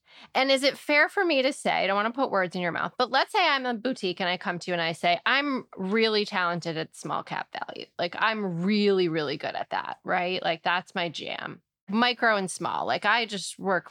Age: 20-39